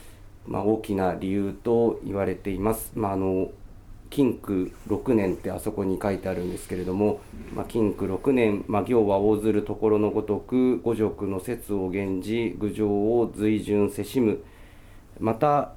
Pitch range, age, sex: 95-115 Hz, 40-59, male